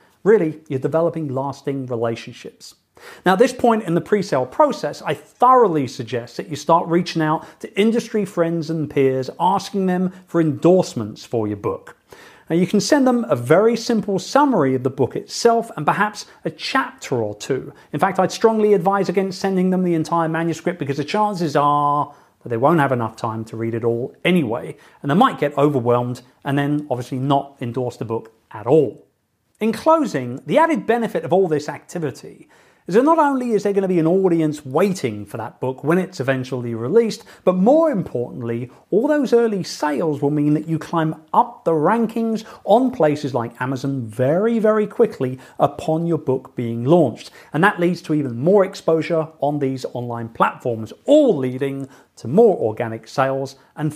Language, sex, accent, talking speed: English, male, British, 185 wpm